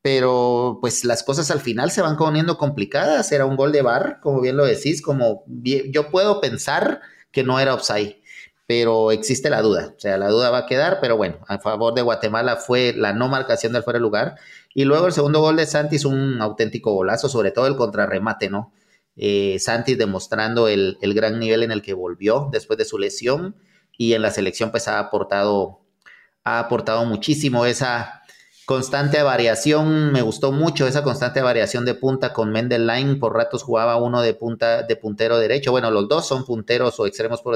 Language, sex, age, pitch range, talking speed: English, male, 30-49, 110-140 Hz, 195 wpm